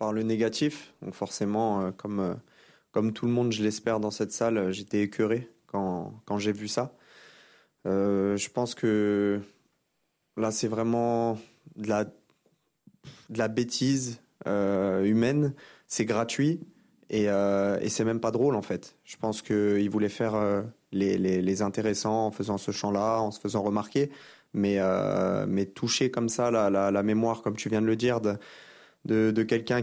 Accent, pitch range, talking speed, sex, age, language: French, 100-115 Hz, 175 wpm, male, 20-39, French